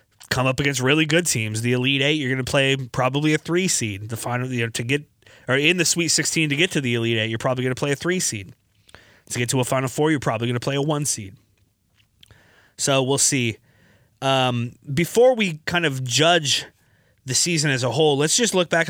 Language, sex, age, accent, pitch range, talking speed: English, male, 30-49, American, 110-145 Hz, 245 wpm